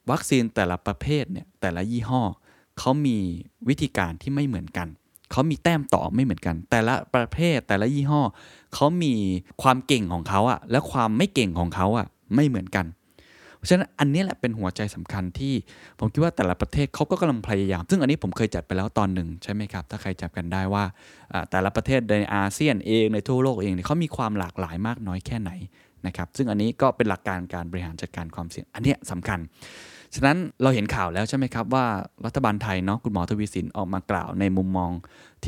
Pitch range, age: 95-125 Hz, 20-39